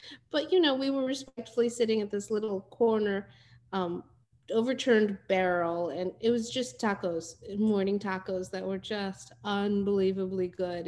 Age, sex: 30-49, female